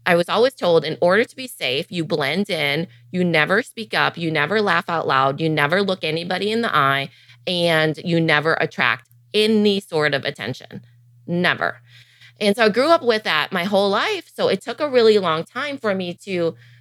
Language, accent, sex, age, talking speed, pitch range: English, American, female, 20-39, 205 wpm, 130-195 Hz